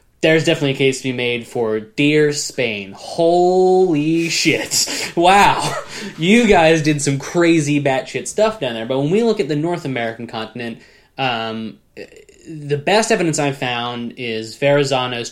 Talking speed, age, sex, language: 155 wpm, 10-29, male, English